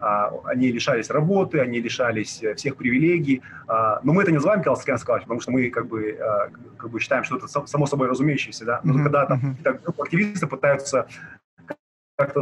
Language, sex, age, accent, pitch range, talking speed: Russian, male, 30-49, native, 120-155 Hz, 125 wpm